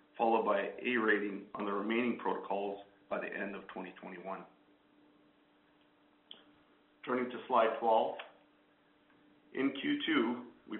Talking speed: 115 wpm